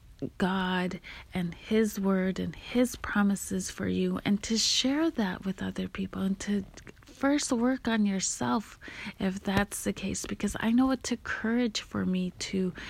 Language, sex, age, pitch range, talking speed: English, female, 30-49, 185-225 Hz, 165 wpm